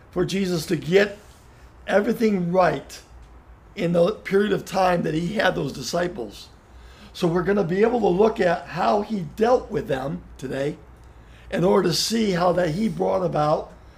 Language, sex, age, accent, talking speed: English, male, 50-69, American, 170 wpm